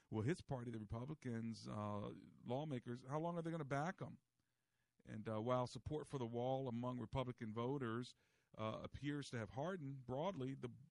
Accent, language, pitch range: American, English, 110-135 Hz